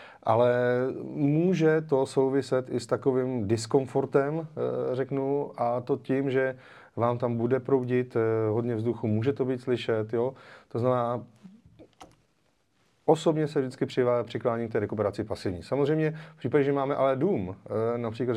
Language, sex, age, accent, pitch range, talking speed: Czech, male, 30-49, native, 110-135 Hz, 135 wpm